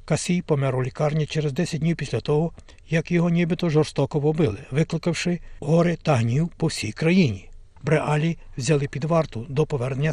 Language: Ukrainian